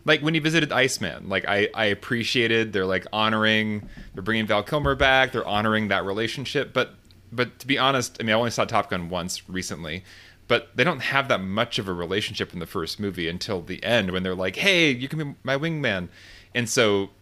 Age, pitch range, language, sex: 30-49, 95-120 Hz, English, male